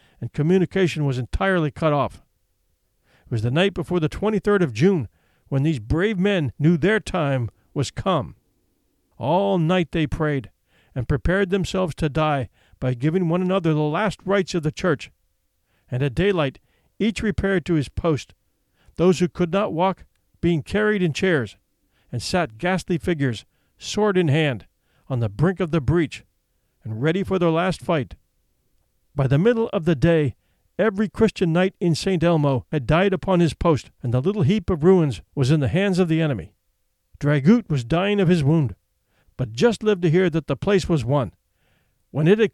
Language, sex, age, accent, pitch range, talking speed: English, male, 50-69, American, 130-185 Hz, 180 wpm